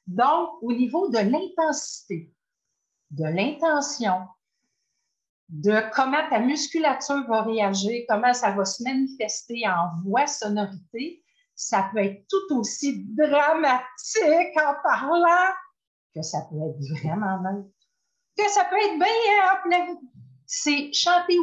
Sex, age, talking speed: female, 50-69, 120 wpm